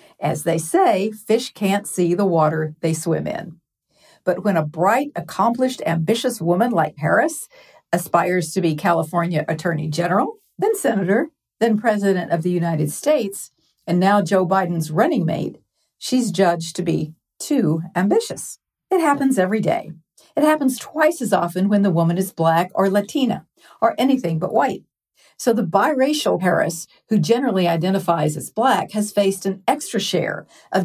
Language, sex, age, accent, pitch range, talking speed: English, female, 50-69, American, 170-225 Hz, 160 wpm